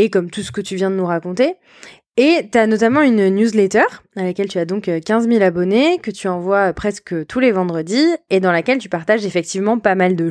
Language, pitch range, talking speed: French, 190-250 Hz, 235 wpm